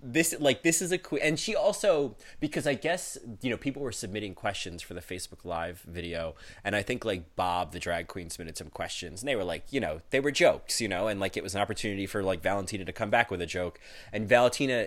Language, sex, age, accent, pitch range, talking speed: English, male, 20-39, American, 90-120 Hz, 245 wpm